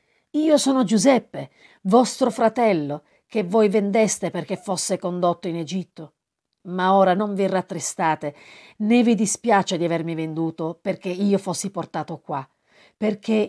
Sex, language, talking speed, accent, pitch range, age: female, Italian, 135 wpm, native, 165-215 Hz, 40-59